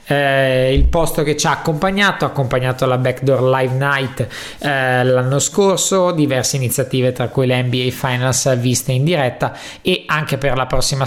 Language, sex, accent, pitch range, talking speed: Italian, male, native, 130-155 Hz, 165 wpm